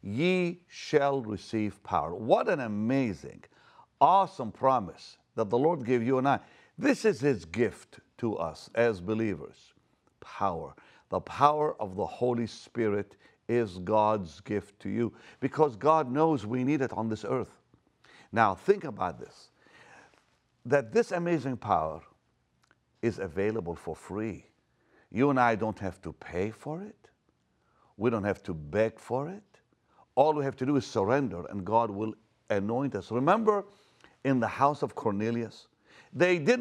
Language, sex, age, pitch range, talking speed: English, male, 50-69, 105-150 Hz, 150 wpm